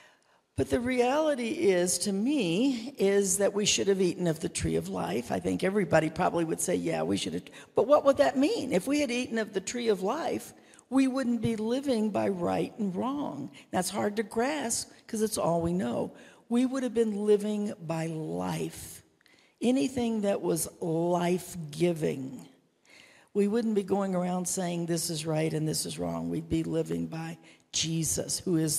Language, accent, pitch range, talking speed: English, American, 160-215 Hz, 185 wpm